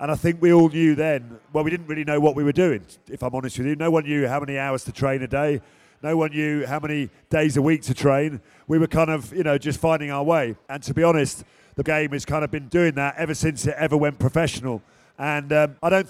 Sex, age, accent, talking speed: male, 40-59, British, 270 wpm